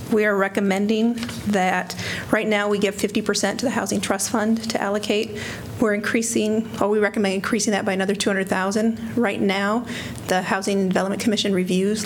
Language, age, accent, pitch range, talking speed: English, 40-59, American, 190-215 Hz, 170 wpm